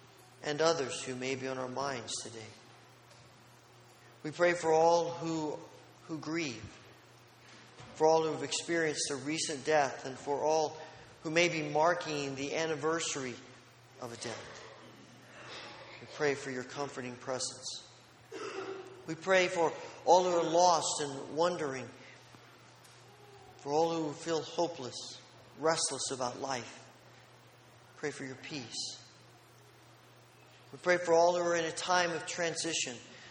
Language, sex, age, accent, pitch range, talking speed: English, male, 40-59, American, 125-165 Hz, 135 wpm